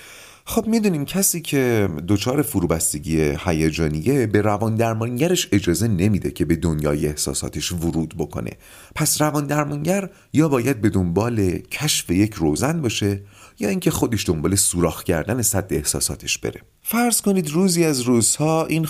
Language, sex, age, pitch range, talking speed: Persian, male, 30-49, 95-145 Hz, 135 wpm